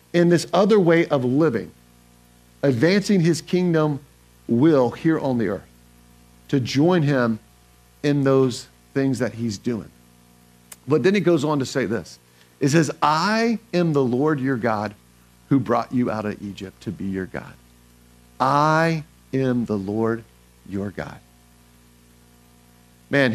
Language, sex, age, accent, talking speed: English, male, 50-69, American, 145 wpm